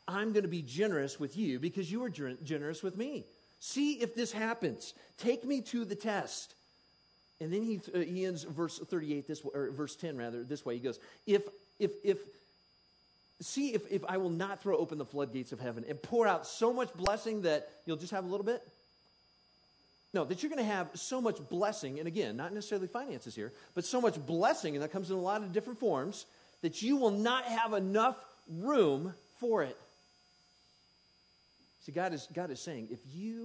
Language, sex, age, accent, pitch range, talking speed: English, male, 50-69, American, 125-205 Hz, 205 wpm